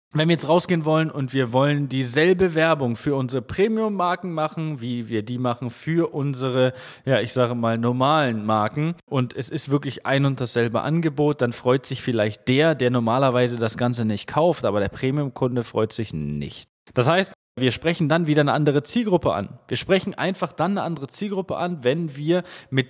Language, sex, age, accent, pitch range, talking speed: German, male, 20-39, German, 125-170 Hz, 190 wpm